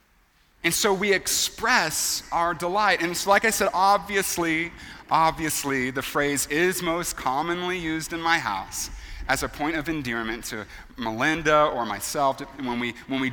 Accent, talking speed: American, 155 wpm